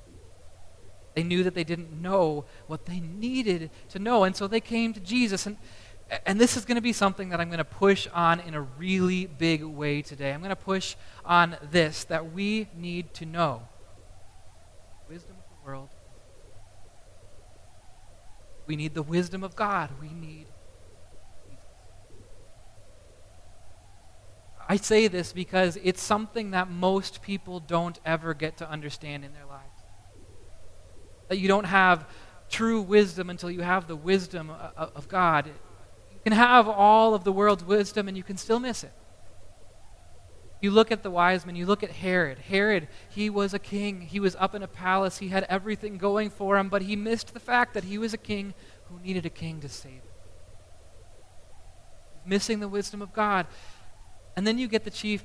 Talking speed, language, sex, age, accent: 175 wpm, English, male, 30-49, American